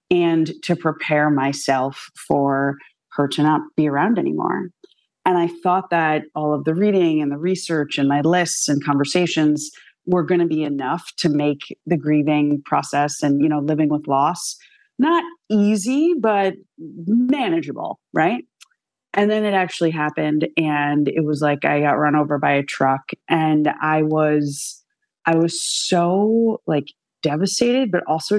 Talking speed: 155 wpm